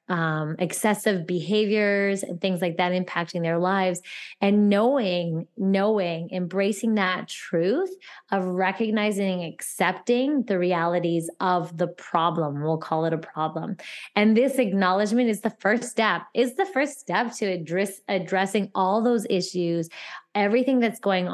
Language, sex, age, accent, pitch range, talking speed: English, female, 20-39, American, 175-215 Hz, 140 wpm